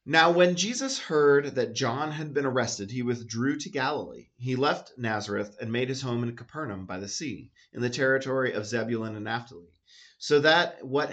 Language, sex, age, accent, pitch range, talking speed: English, male, 30-49, American, 105-135 Hz, 190 wpm